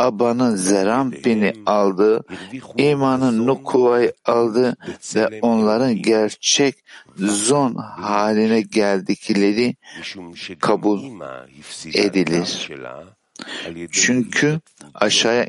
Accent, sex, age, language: native, male, 60-79, Turkish